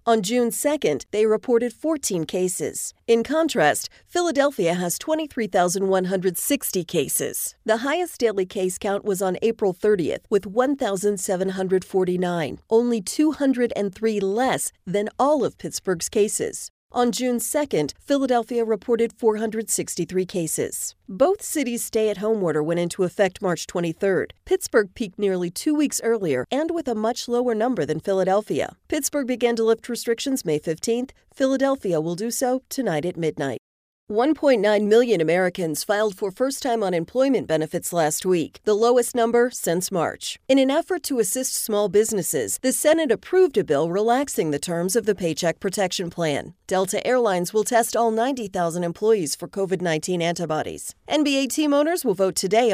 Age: 40-59